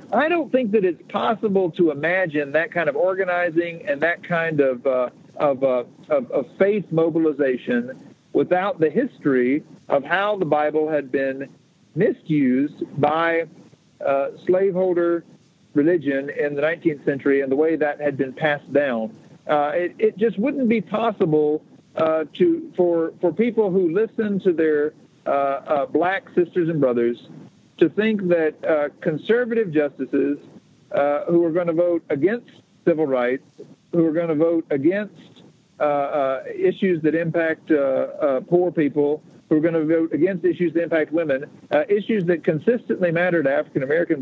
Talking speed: 160 wpm